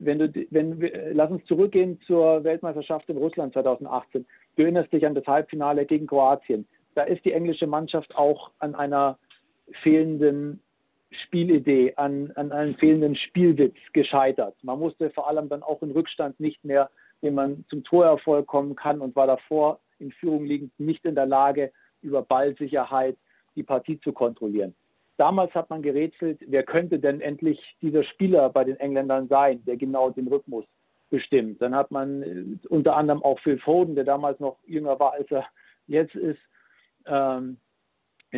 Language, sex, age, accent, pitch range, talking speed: German, male, 50-69, German, 135-160 Hz, 165 wpm